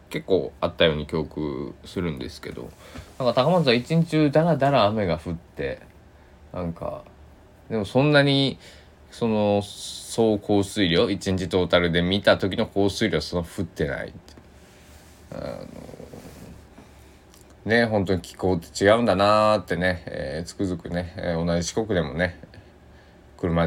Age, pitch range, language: 20-39, 85-120 Hz, Japanese